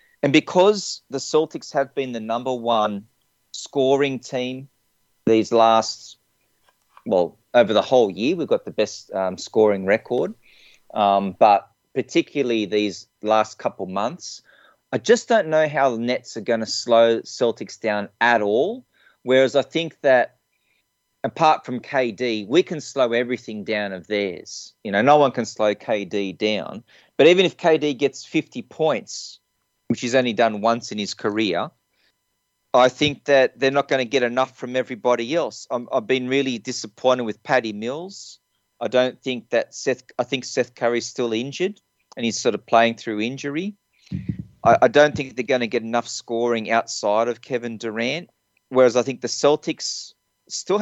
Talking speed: 165 wpm